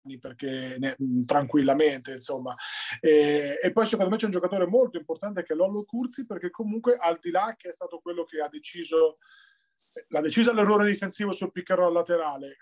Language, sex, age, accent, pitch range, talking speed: Italian, male, 30-49, native, 155-205 Hz, 175 wpm